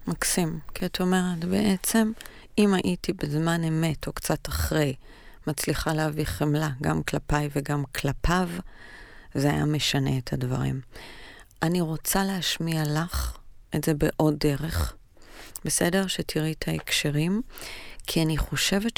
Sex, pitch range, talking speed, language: female, 120-180 Hz, 125 wpm, Hebrew